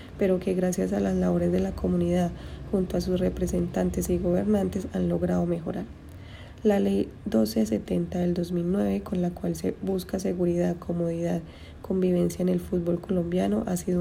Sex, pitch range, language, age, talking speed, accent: female, 170-195 Hz, Spanish, 20-39, 160 wpm, Colombian